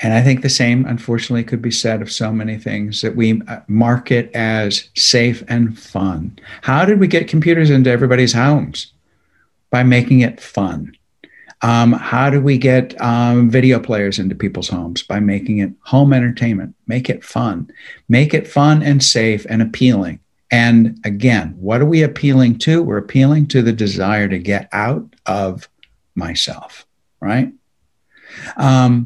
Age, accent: 60-79, American